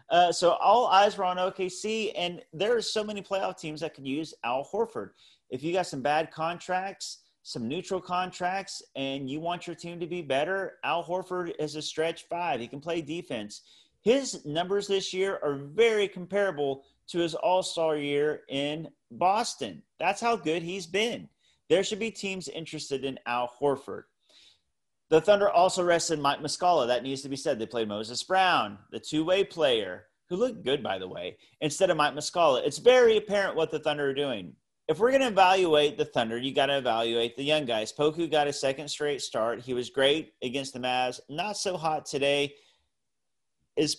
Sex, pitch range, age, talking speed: male, 135-180 Hz, 40-59, 190 wpm